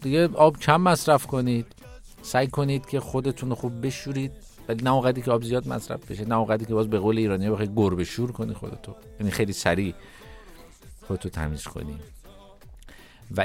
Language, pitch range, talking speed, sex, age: Persian, 110-155 Hz, 170 wpm, male, 50-69